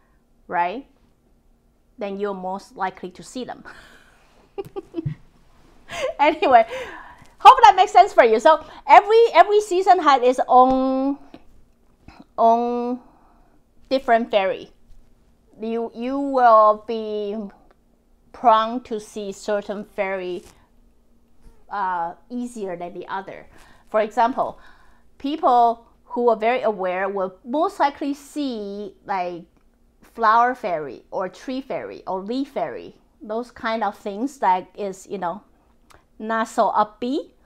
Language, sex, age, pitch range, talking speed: English, female, 30-49, 200-255 Hz, 110 wpm